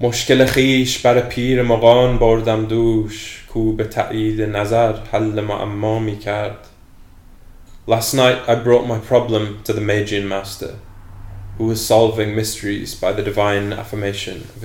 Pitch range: 100-120 Hz